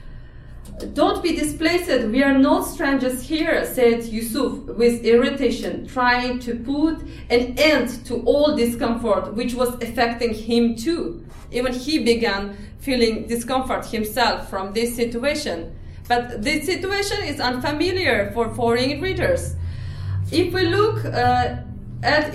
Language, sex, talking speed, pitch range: English, female, 125 wpm, 205-270 Hz